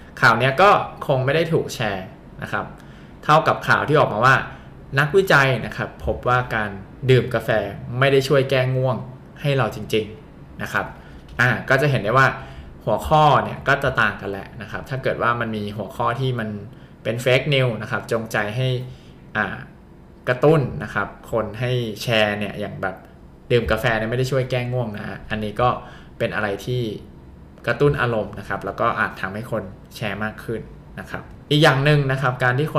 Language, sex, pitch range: Thai, male, 105-130 Hz